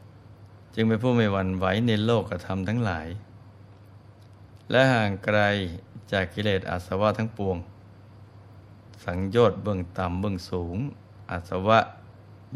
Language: Thai